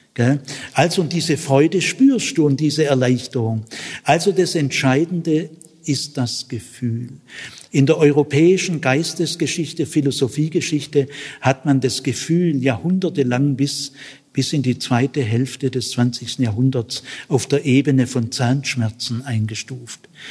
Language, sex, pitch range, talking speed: German, male, 125-155 Hz, 120 wpm